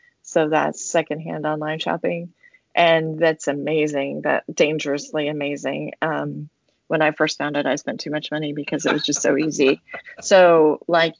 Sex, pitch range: female, 145-175 Hz